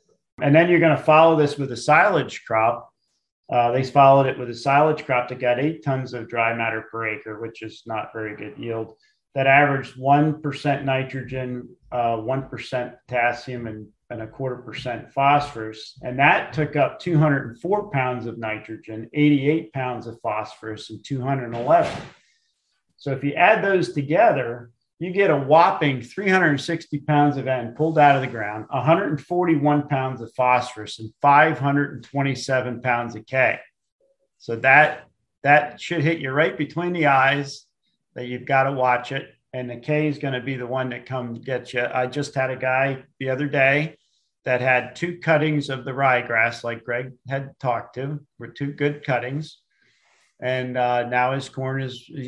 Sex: male